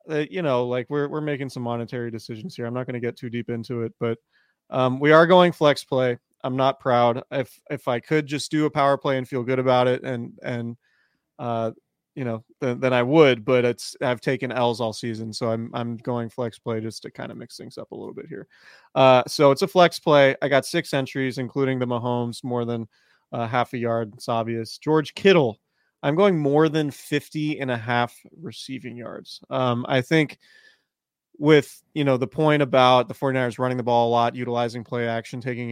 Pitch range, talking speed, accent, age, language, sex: 120-145 Hz, 220 wpm, American, 30-49, English, male